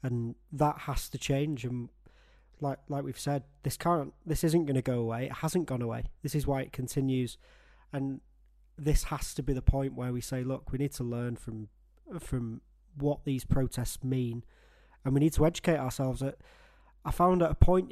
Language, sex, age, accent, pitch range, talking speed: English, male, 20-39, British, 125-145 Hz, 200 wpm